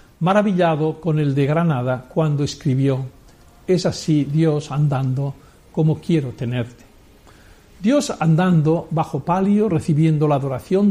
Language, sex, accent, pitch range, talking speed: Spanish, male, Spanish, 150-190 Hz, 115 wpm